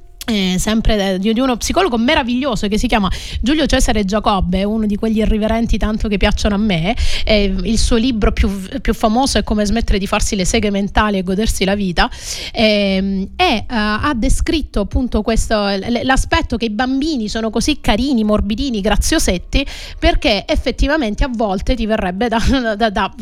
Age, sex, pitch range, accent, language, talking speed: 30-49, female, 215-265 Hz, native, Italian, 175 wpm